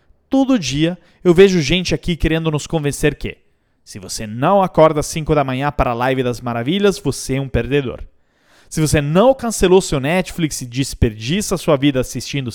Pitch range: 125-180 Hz